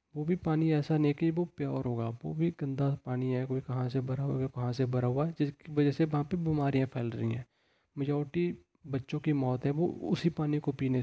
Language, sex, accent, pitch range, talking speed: Hindi, male, native, 130-155 Hz, 235 wpm